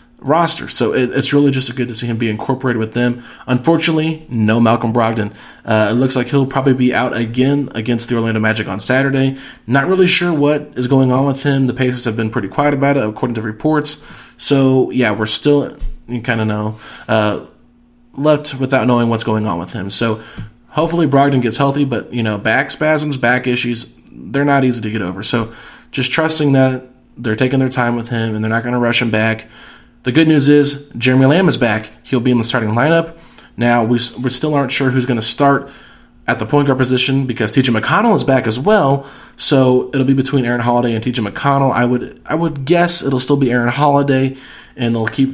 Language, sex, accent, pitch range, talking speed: English, male, American, 115-140 Hz, 215 wpm